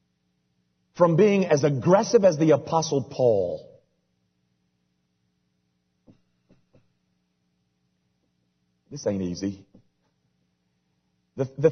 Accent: American